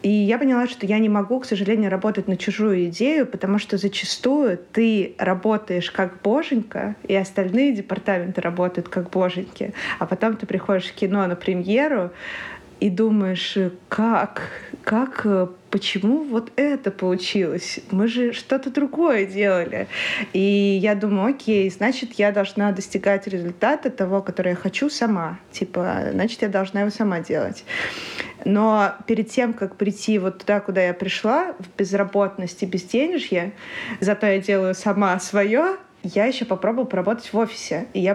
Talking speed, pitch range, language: 150 wpm, 190-225 Hz, Russian